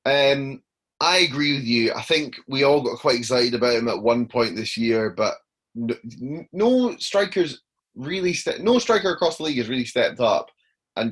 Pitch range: 110-135 Hz